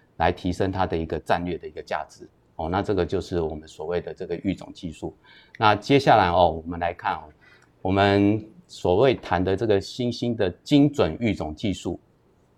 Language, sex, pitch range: Chinese, male, 85-110 Hz